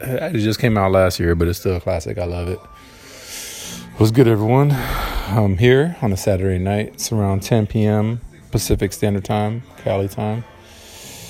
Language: English